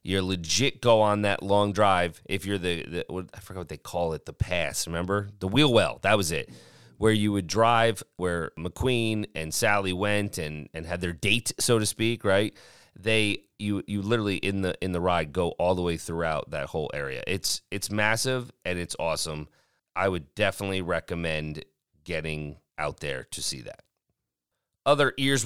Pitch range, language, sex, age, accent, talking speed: 85-115 Hz, English, male, 30-49, American, 185 wpm